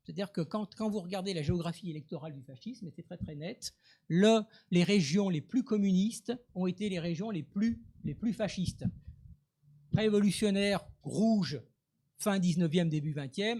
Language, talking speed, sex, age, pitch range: French, 160 wpm, male, 50-69, 150-205 Hz